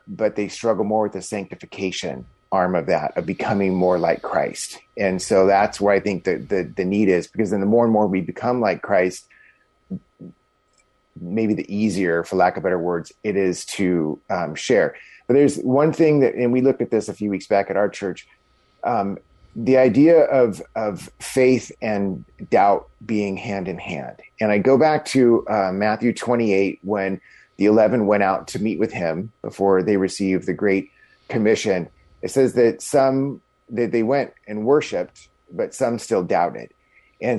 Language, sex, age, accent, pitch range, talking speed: English, male, 30-49, American, 95-125 Hz, 185 wpm